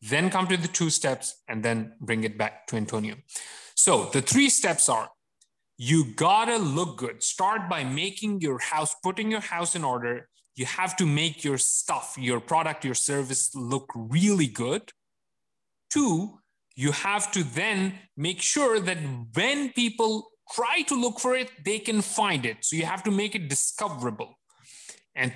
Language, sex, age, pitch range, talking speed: English, male, 30-49, 135-215 Hz, 175 wpm